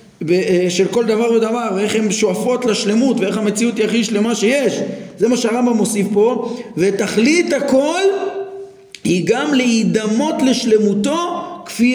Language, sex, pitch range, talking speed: Hebrew, male, 185-235 Hz, 130 wpm